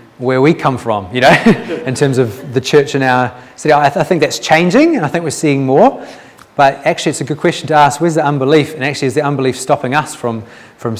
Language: English